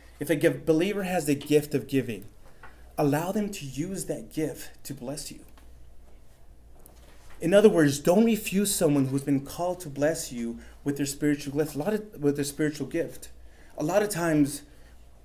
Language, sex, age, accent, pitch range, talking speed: English, male, 30-49, American, 130-165 Hz, 165 wpm